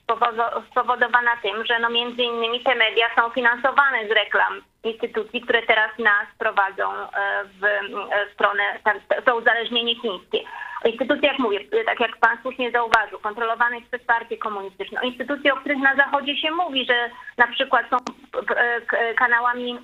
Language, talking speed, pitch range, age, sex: Polish, 140 wpm, 220-250 Hz, 30-49, female